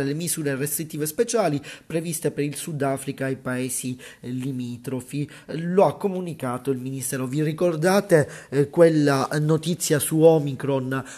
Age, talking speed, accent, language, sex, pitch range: 30-49, 125 wpm, native, Italian, male, 135-160 Hz